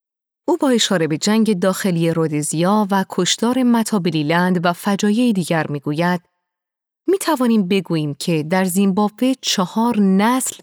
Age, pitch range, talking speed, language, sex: 30-49, 160-210 Hz, 125 wpm, Persian, female